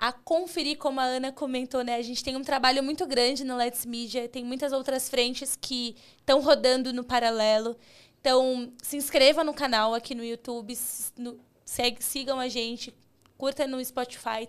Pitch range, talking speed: 235-275 Hz, 175 wpm